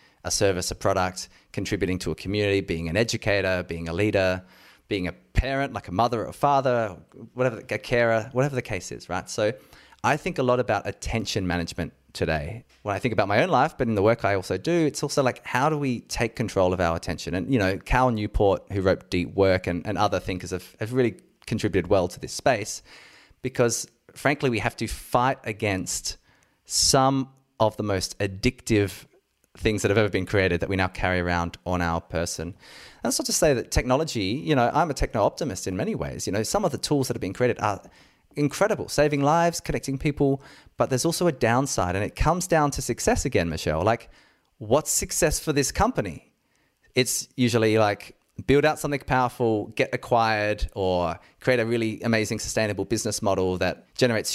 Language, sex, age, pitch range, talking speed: English, male, 20-39, 95-130 Hz, 200 wpm